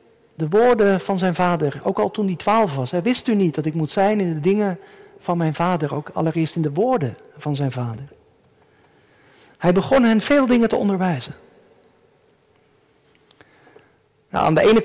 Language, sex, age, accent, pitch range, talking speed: Dutch, male, 50-69, Dutch, 175-230 Hz, 170 wpm